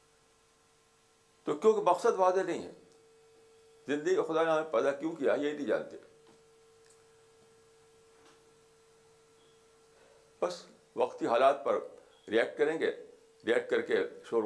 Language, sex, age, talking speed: Urdu, male, 60-79, 110 wpm